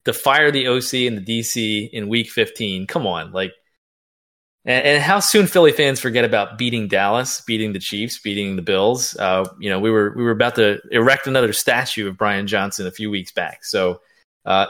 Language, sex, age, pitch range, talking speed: English, male, 20-39, 100-130 Hz, 205 wpm